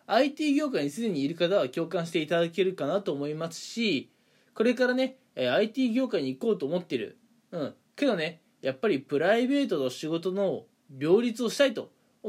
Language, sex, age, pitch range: Japanese, male, 20-39, 155-235 Hz